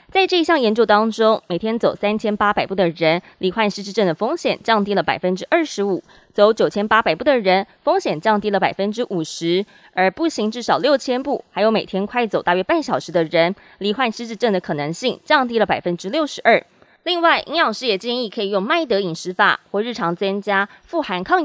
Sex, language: female, Chinese